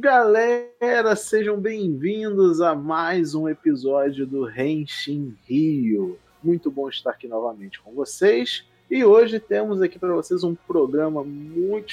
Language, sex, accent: Portuguese, male, Brazilian